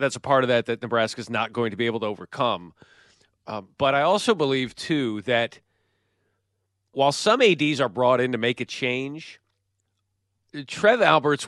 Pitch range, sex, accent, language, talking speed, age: 115-145 Hz, male, American, English, 180 wpm, 40-59